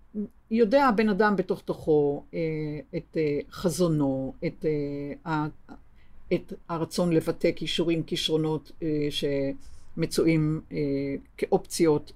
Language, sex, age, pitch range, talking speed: Hebrew, female, 50-69, 140-170 Hz, 70 wpm